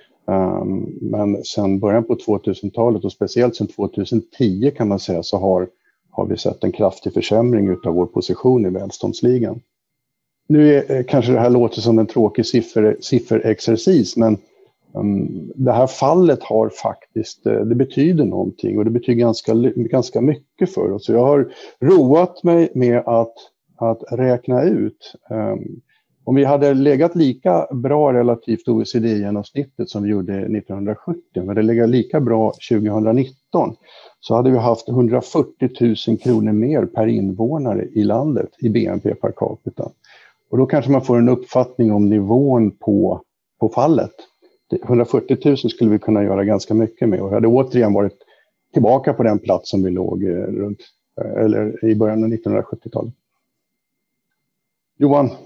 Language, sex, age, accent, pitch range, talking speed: Swedish, male, 50-69, Norwegian, 105-130 Hz, 155 wpm